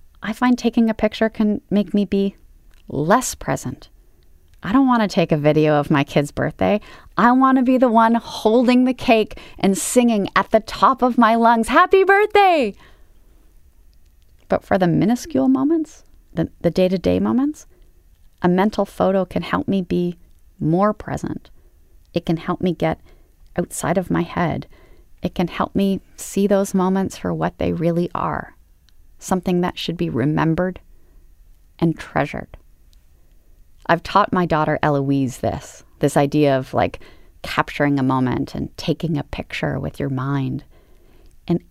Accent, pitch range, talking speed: American, 130-210 Hz, 160 wpm